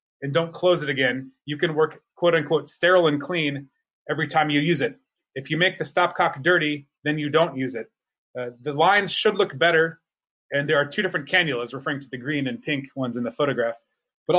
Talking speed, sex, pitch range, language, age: 215 wpm, male, 145-185 Hz, English, 30-49